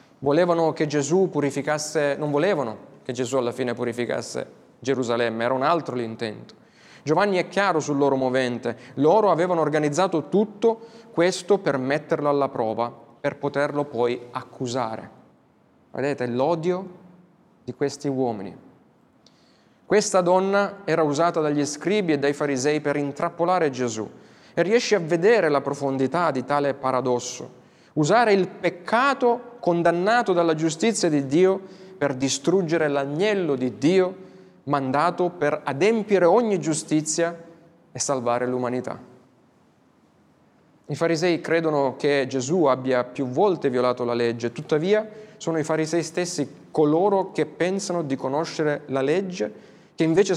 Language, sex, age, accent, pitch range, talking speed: Italian, male, 20-39, native, 135-180 Hz, 125 wpm